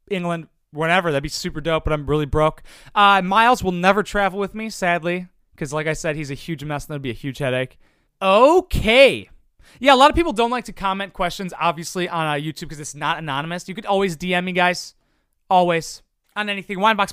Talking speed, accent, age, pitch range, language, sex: 215 wpm, American, 30-49, 160-210 Hz, English, male